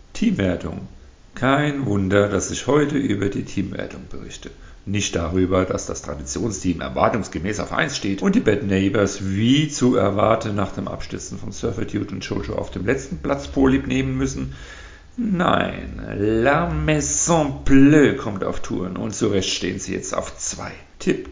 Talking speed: 160 wpm